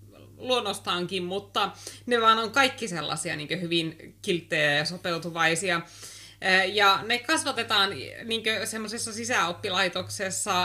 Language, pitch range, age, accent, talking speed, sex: Finnish, 160-200 Hz, 30-49, native, 95 wpm, female